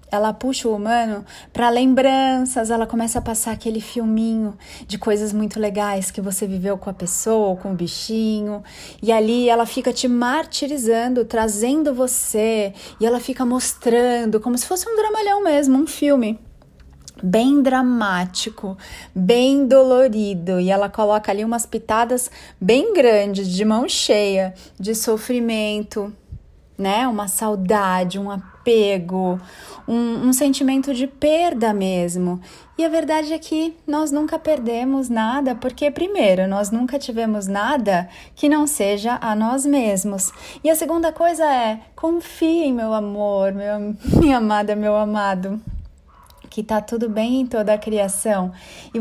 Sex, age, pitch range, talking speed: female, 30-49, 205-265 Hz, 140 wpm